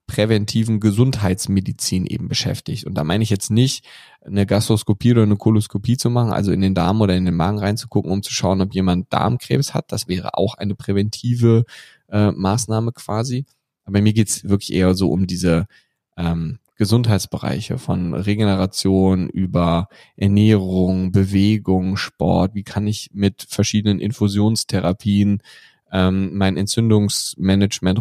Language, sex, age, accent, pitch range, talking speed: German, male, 10-29, German, 95-110 Hz, 145 wpm